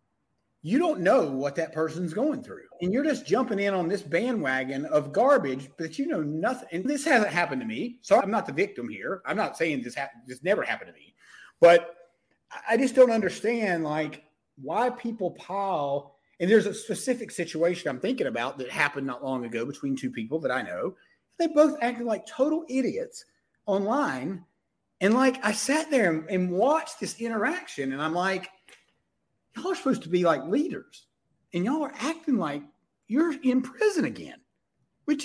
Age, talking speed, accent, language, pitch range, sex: 30-49, 185 wpm, American, English, 175-275 Hz, male